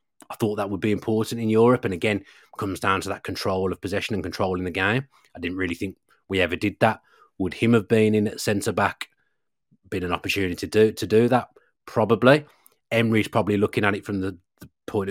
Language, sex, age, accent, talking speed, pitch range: English, male, 30-49, British, 220 wpm, 95-110 Hz